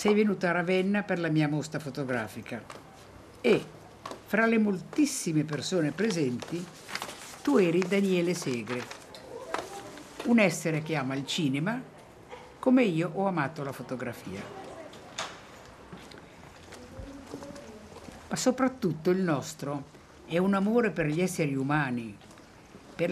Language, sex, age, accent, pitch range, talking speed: Italian, female, 60-79, native, 135-190 Hz, 110 wpm